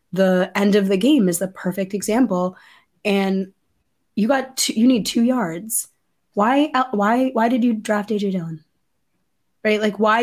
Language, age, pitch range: English, 20-39, 205-280 Hz